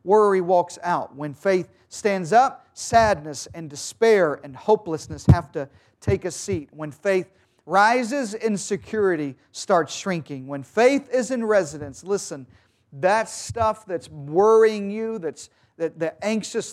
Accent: American